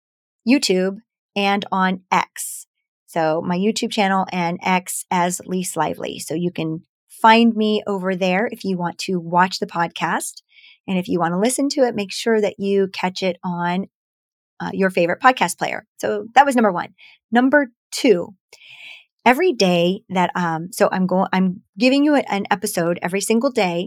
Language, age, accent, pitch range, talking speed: English, 30-49, American, 180-220 Hz, 175 wpm